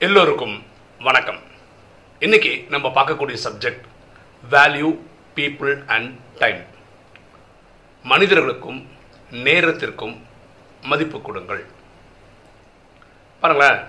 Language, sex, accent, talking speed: Tamil, male, native, 65 wpm